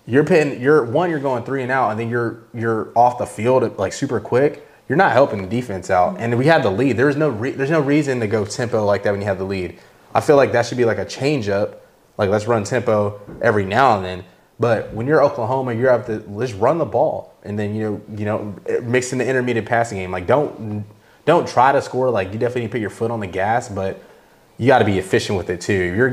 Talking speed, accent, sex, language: 260 wpm, American, male, English